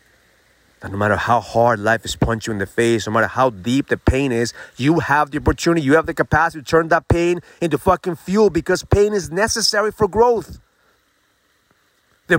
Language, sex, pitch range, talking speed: English, male, 100-145 Hz, 195 wpm